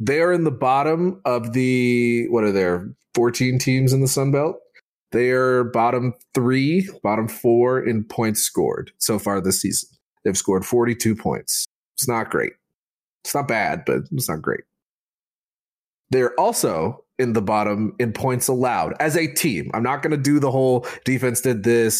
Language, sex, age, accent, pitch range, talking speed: English, male, 30-49, American, 110-140 Hz, 170 wpm